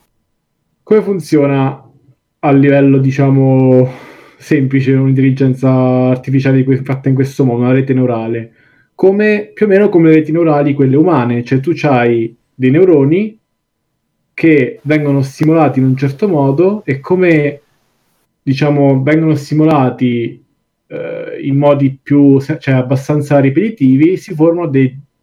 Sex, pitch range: male, 130-155 Hz